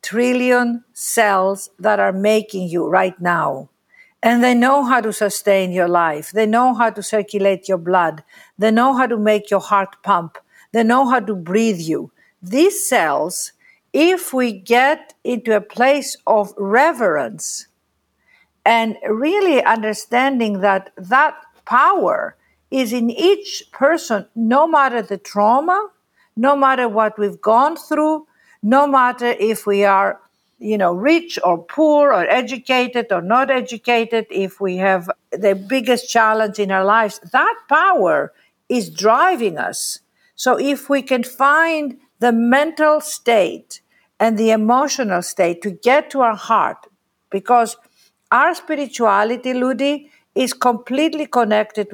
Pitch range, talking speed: 205-275 Hz, 140 wpm